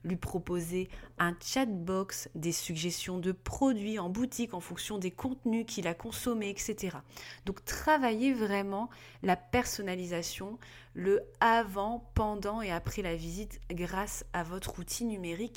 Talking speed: 135 wpm